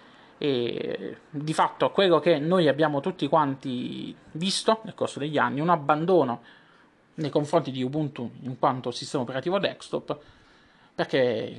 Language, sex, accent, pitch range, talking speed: Italian, male, native, 135-175 Hz, 130 wpm